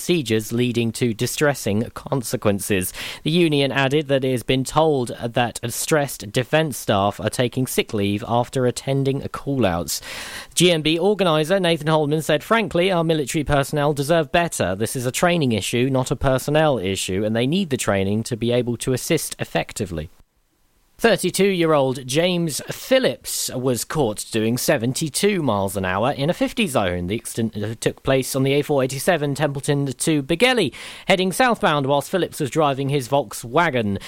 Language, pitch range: English, 120-170 Hz